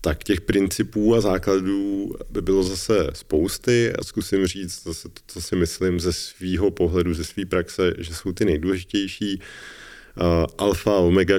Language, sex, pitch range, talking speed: Czech, male, 85-95 Hz, 165 wpm